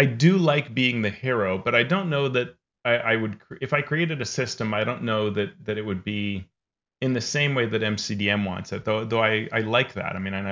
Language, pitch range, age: English, 100-130 Hz, 30-49